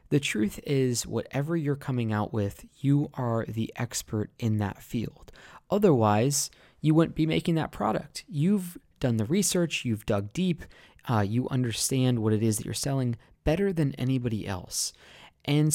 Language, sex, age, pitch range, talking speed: English, male, 20-39, 115-155 Hz, 165 wpm